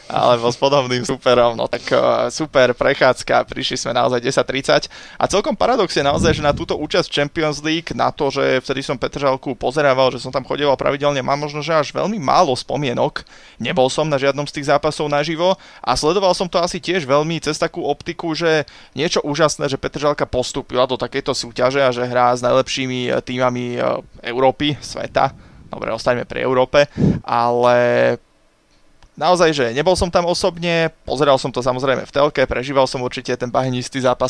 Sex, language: male, Slovak